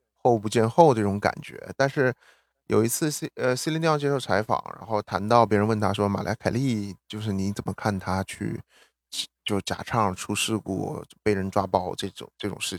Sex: male